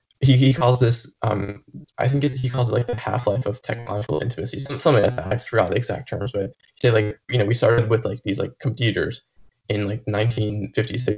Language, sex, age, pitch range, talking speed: English, male, 20-39, 105-125 Hz, 225 wpm